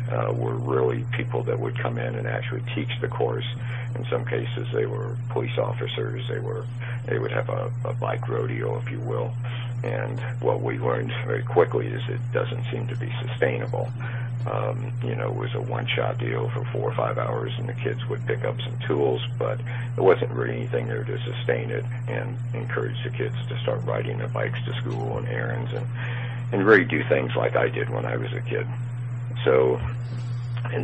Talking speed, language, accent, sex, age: 200 wpm, English, American, male, 50-69